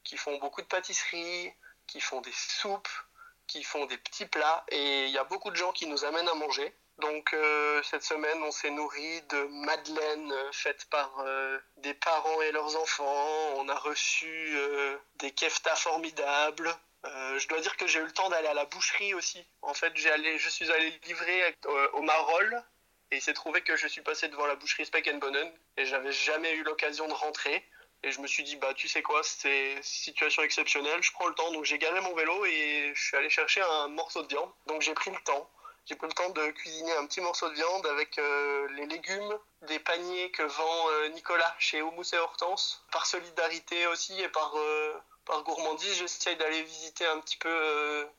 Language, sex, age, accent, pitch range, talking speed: French, male, 20-39, French, 145-165 Hz, 215 wpm